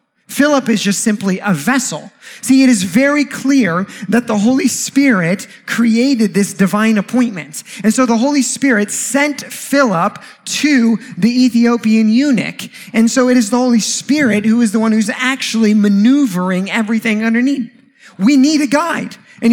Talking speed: 155 wpm